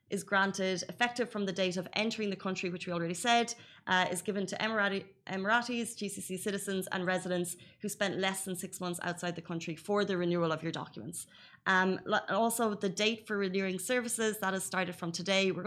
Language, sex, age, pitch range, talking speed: Arabic, female, 20-39, 175-205 Hz, 195 wpm